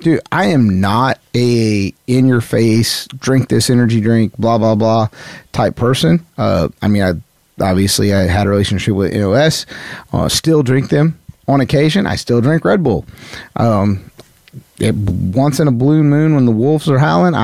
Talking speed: 170 wpm